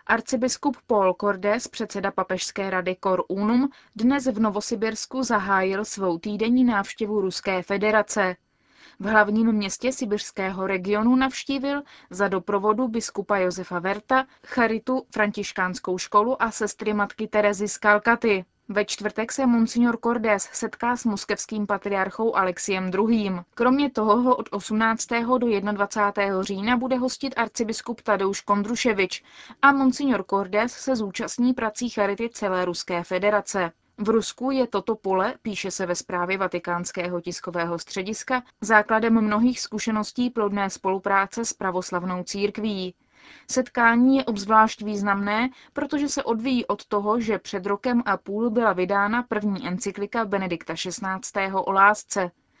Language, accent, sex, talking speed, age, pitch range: Czech, native, female, 130 wpm, 20-39, 195-235 Hz